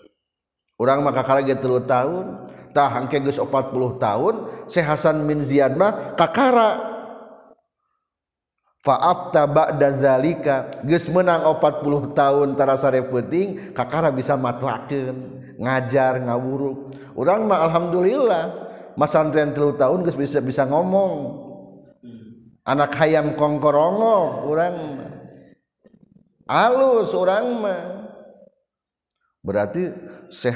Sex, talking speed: male, 100 wpm